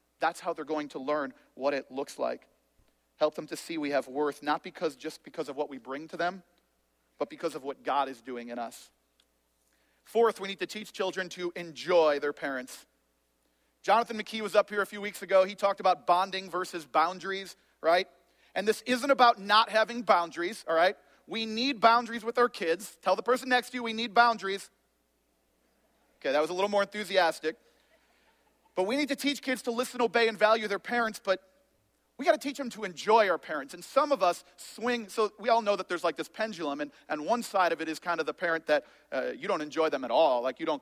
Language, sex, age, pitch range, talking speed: English, male, 40-59, 150-220 Hz, 225 wpm